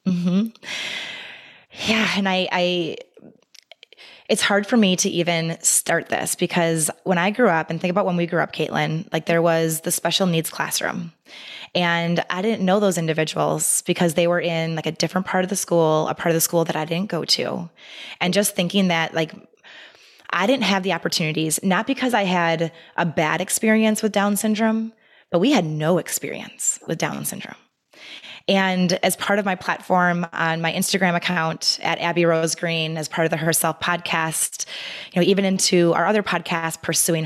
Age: 20-39